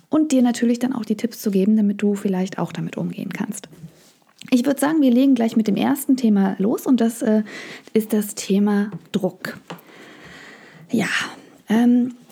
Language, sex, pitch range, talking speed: German, female, 170-210 Hz, 175 wpm